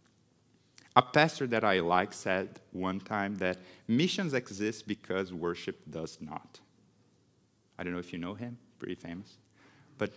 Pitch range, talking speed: 105-160 Hz, 150 wpm